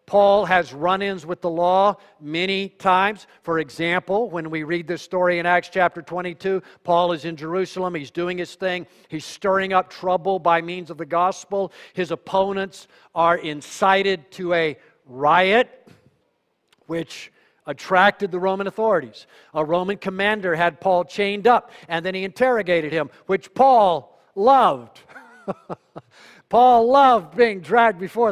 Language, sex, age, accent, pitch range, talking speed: English, male, 50-69, American, 165-200 Hz, 145 wpm